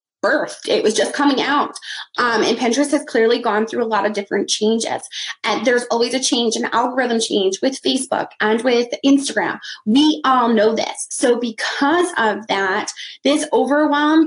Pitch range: 230-285 Hz